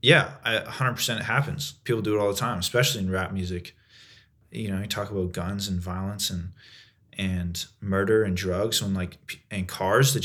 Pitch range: 95-110 Hz